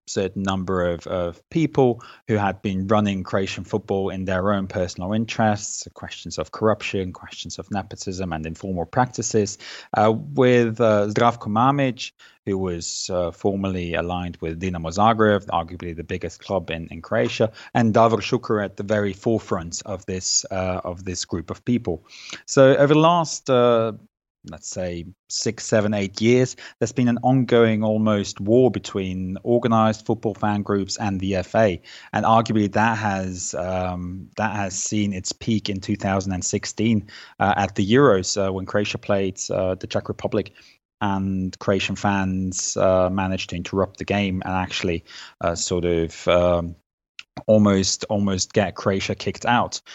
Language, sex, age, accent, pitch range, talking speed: English, male, 30-49, British, 95-110 Hz, 155 wpm